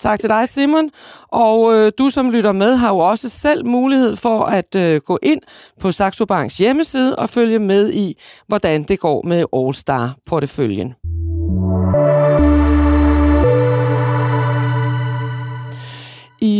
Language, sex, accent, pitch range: Danish, female, native, 180-240 Hz